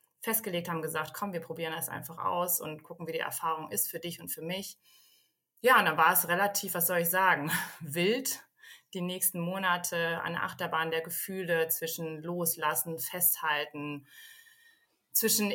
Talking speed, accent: 160 wpm, German